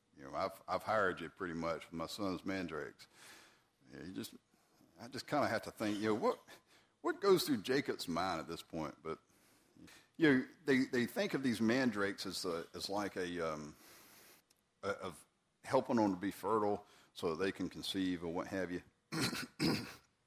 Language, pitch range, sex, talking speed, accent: English, 90-120 Hz, male, 190 wpm, American